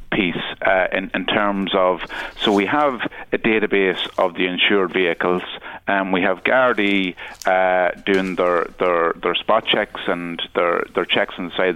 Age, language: 30-49, English